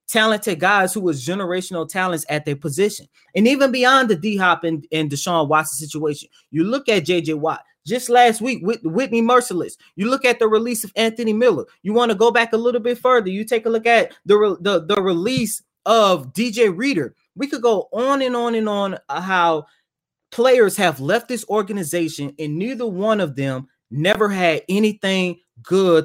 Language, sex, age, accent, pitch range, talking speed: English, male, 20-39, American, 160-230 Hz, 190 wpm